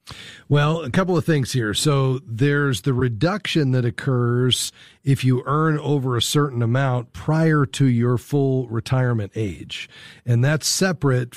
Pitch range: 115-140 Hz